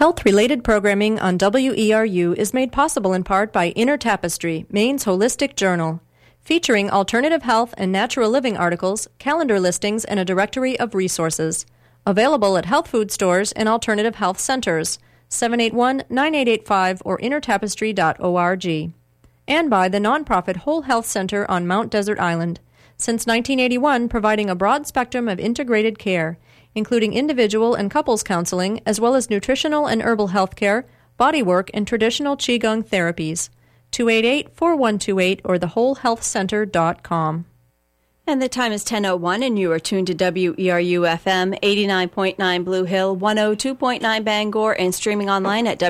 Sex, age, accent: female, 30-49, American